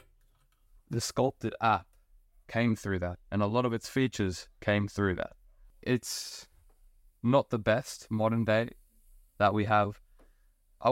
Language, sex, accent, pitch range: English, male, British, 90-120 Hz